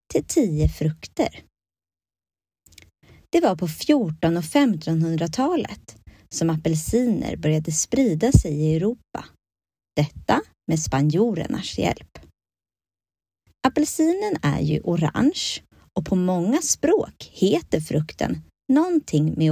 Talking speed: 100 wpm